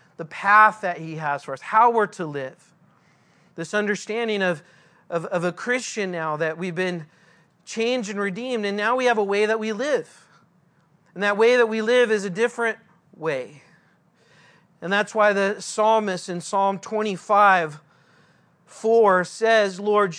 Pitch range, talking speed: 175-215 Hz, 165 wpm